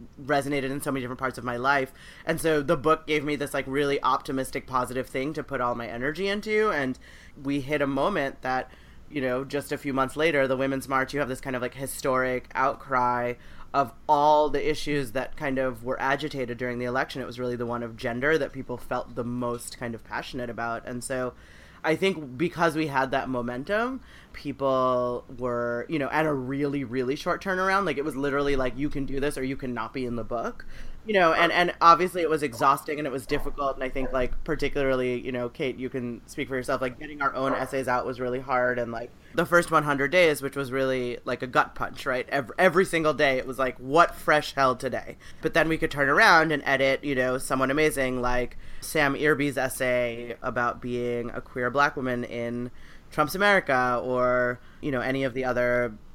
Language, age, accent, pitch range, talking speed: English, 30-49, American, 125-145 Hz, 220 wpm